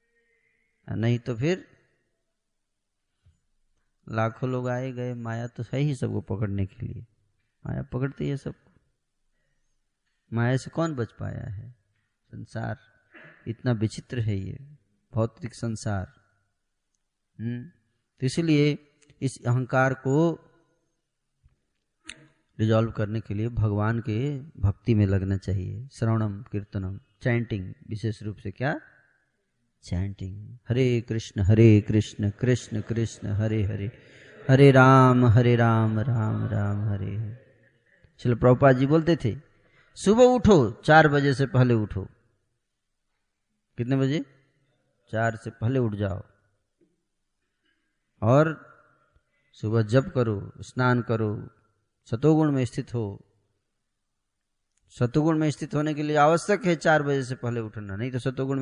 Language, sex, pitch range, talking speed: Hindi, male, 105-135 Hz, 115 wpm